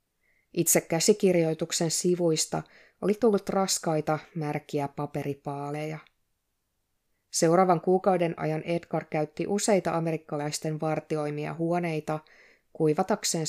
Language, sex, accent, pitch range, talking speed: Finnish, female, native, 150-180 Hz, 80 wpm